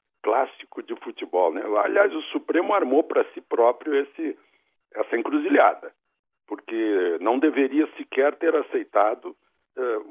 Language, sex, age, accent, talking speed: Portuguese, male, 60-79, Brazilian, 125 wpm